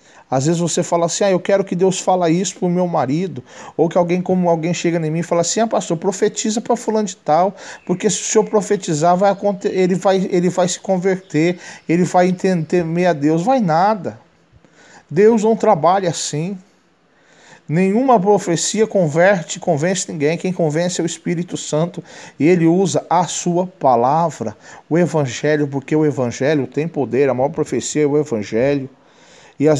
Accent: Brazilian